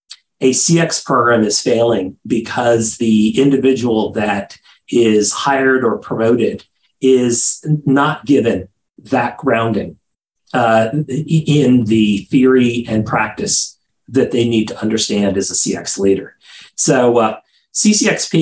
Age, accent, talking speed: 40-59, American, 115 wpm